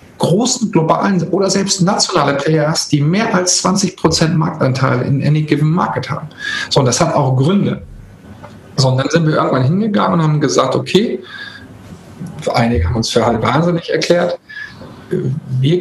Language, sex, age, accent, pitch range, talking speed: German, male, 40-59, German, 125-170 Hz, 155 wpm